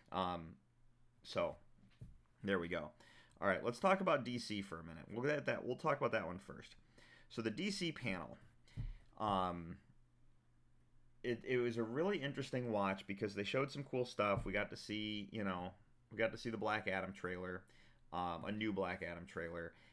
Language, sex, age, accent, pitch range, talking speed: English, male, 30-49, American, 95-120 Hz, 180 wpm